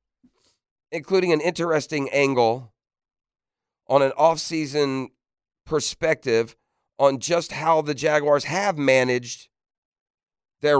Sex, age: male, 40-59